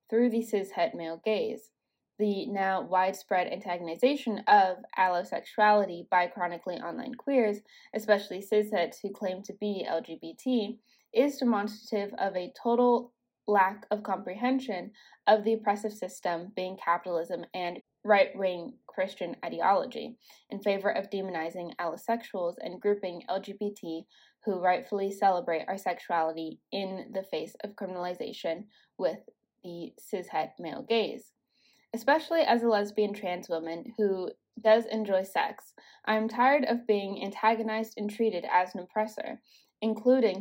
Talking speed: 125 wpm